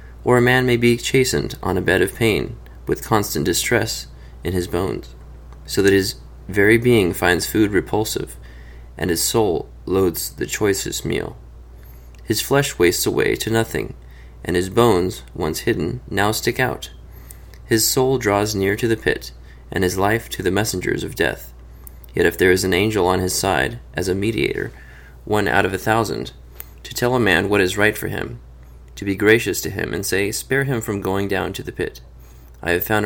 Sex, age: male, 30-49